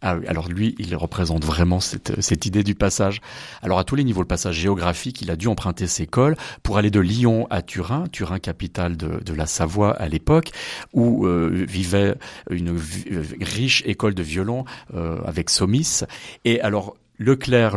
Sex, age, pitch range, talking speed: male, 40-59, 90-115 Hz, 170 wpm